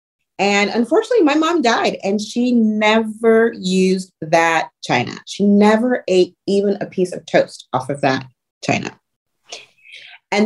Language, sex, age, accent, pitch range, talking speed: English, female, 30-49, American, 185-235 Hz, 140 wpm